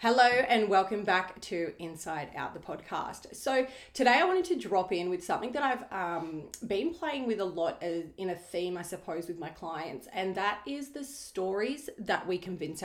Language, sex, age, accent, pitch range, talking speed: English, female, 30-49, Australian, 180-225 Hz, 195 wpm